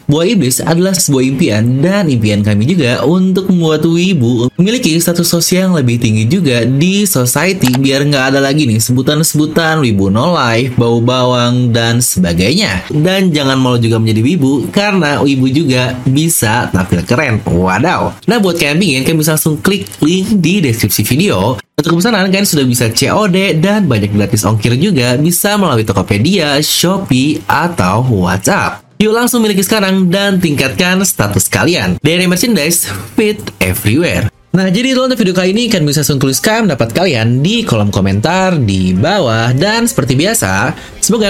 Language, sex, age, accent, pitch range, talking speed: English, male, 20-39, Indonesian, 115-185 Hz, 160 wpm